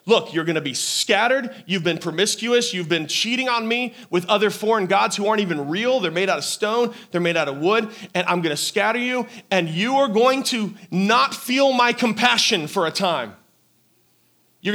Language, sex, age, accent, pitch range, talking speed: English, male, 30-49, American, 165-225 Hz, 210 wpm